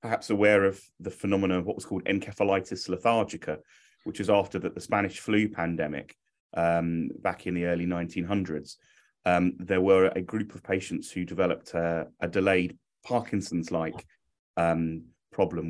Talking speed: 145 wpm